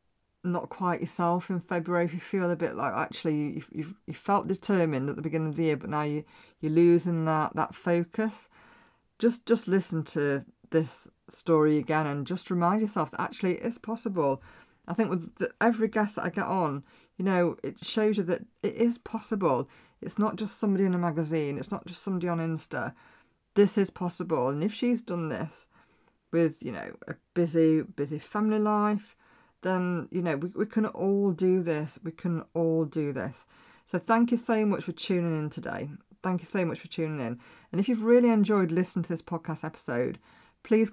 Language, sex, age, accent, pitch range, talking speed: English, female, 40-59, British, 160-205 Hz, 195 wpm